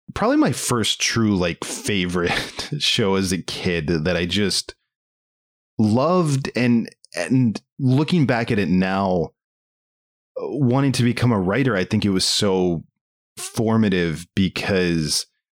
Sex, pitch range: male, 90-120 Hz